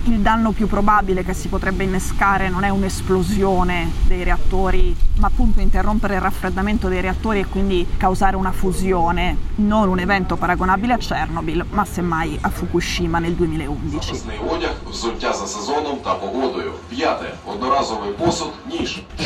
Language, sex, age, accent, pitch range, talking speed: Italian, female, 20-39, native, 180-210 Hz, 115 wpm